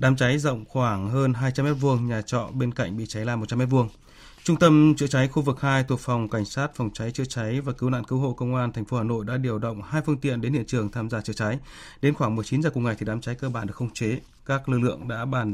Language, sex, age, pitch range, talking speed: Vietnamese, male, 20-39, 115-135 Hz, 280 wpm